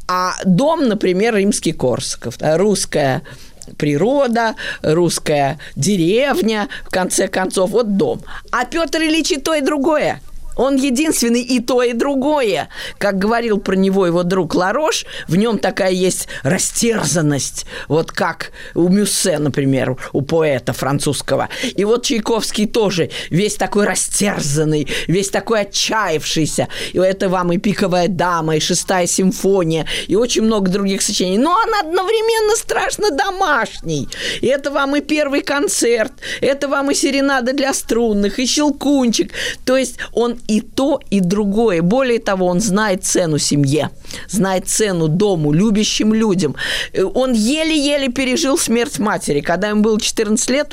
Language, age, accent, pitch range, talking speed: Russian, 20-39, native, 185-265 Hz, 140 wpm